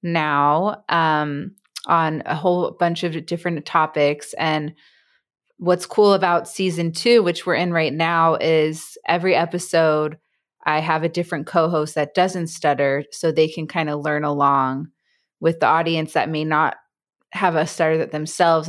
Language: English